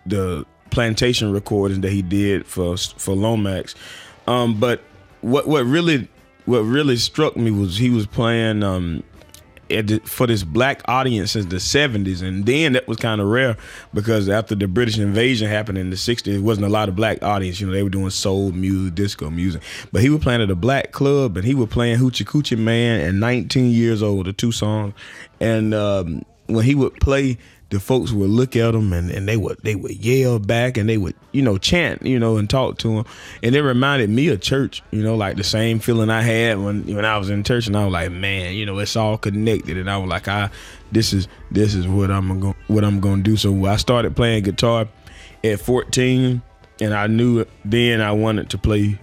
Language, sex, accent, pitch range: French, male, American, 100-120 Hz